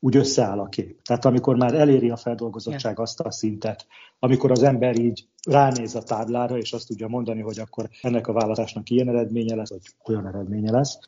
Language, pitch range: Hungarian, 105-120 Hz